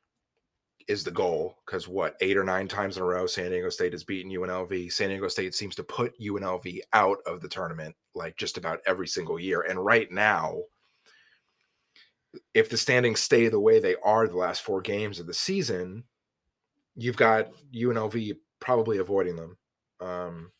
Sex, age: male, 30-49